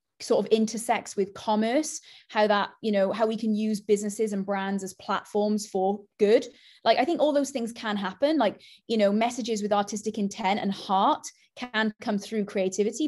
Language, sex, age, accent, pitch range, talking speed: English, female, 20-39, British, 200-250 Hz, 190 wpm